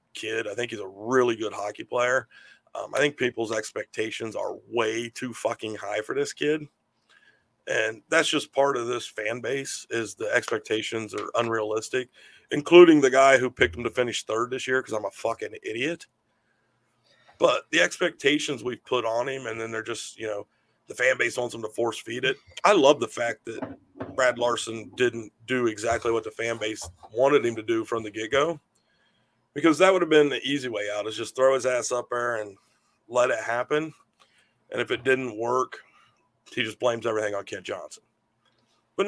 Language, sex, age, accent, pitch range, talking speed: English, male, 40-59, American, 110-135 Hz, 195 wpm